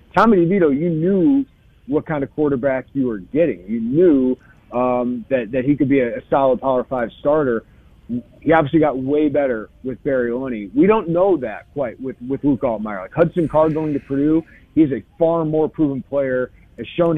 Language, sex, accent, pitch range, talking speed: English, male, American, 125-155 Hz, 195 wpm